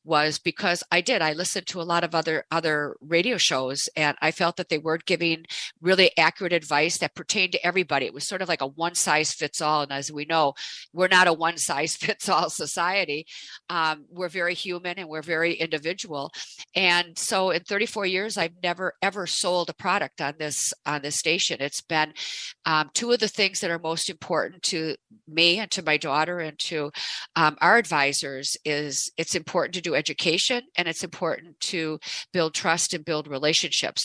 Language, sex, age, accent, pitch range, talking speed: English, female, 50-69, American, 155-180 Hz, 195 wpm